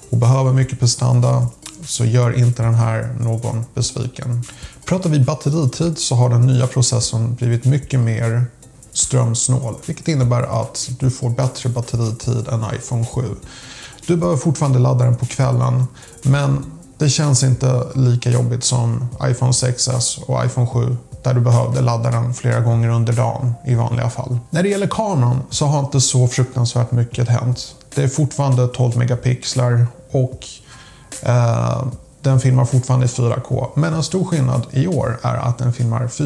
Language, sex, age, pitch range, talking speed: Swedish, male, 30-49, 120-135 Hz, 160 wpm